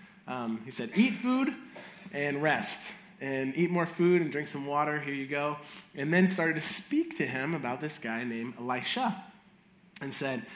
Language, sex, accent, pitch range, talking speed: English, male, American, 135-200 Hz, 180 wpm